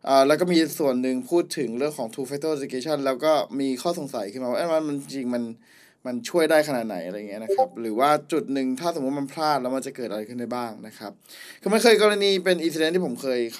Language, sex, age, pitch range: Thai, male, 20-39, 130-180 Hz